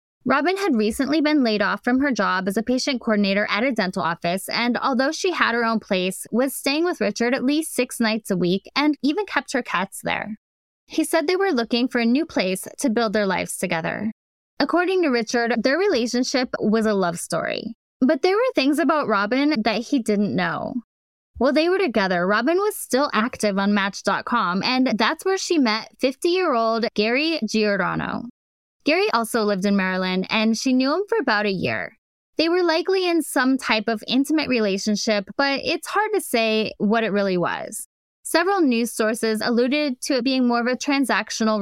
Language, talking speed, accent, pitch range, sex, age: English, 190 wpm, American, 215-290 Hz, female, 10-29